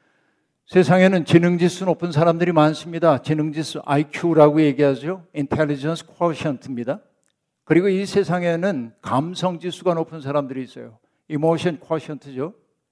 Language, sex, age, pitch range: Korean, male, 60-79, 135-175 Hz